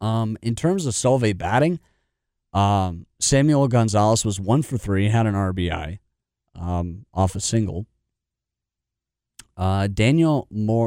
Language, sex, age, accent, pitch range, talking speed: English, male, 30-49, American, 95-115 Hz, 110 wpm